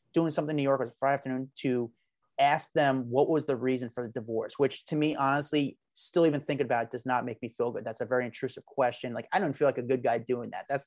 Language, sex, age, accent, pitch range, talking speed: English, male, 30-49, American, 125-155 Hz, 280 wpm